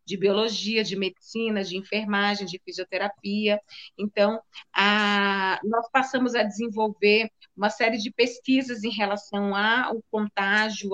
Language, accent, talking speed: Portuguese, Brazilian, 115 wpm